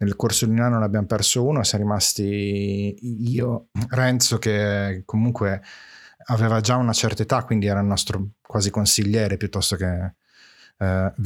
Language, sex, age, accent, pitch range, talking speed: Italian, male, 30-49, native, 100-115 Hz, 150 wpm